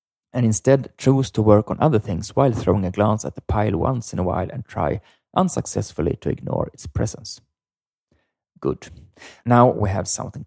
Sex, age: male, 30-49